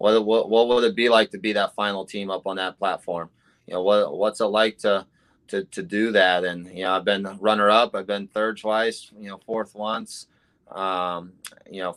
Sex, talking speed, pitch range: male, 225 wpm, 95-105 Hz